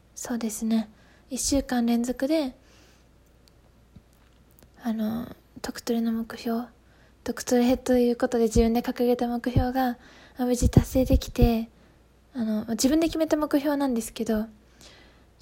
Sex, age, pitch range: female, 20-39, 225-255 Hz